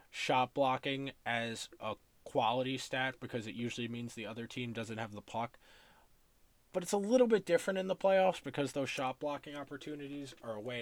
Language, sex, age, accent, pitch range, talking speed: English, male, 20-39, American, 120-170 Hz, 190 wpm